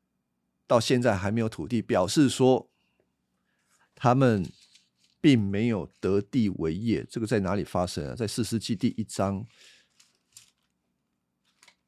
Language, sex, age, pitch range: Chinese, male, 50-69, 85-125 Hz